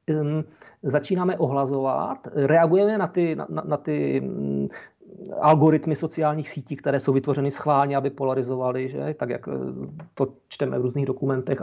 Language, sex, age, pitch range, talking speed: Czech, male, 40-59, 135-180 Hz, 130 wpm